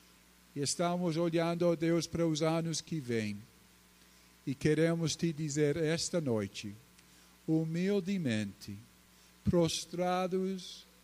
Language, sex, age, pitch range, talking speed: Portuguese, male, 50-69, 105-165 Hz, 100 wpm